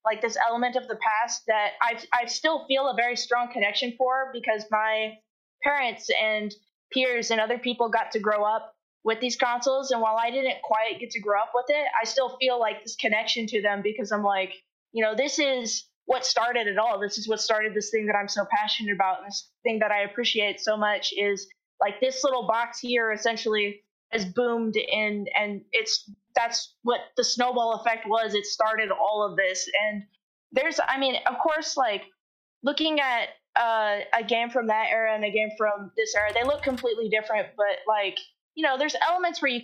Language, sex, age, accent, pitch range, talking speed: English, female, 20-39, American, 215-250 Hz, 205 wpm